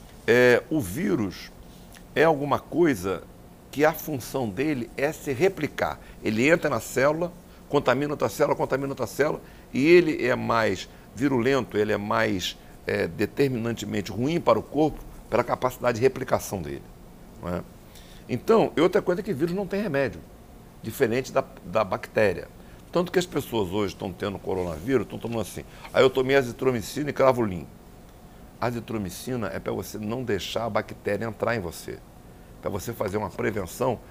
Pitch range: 105-155 Hz